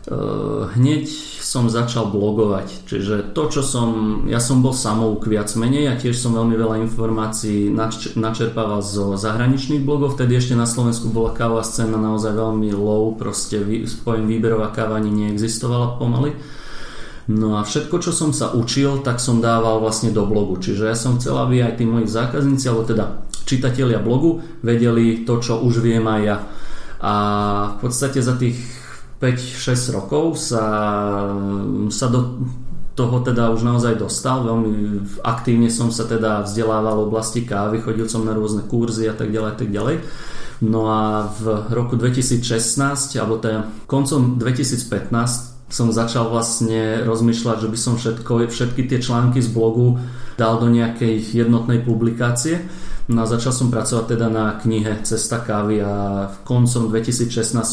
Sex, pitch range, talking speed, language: male, 110-125 Hz, 155 wpm, Slovak